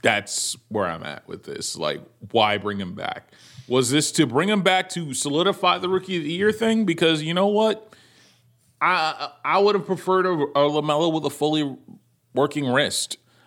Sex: male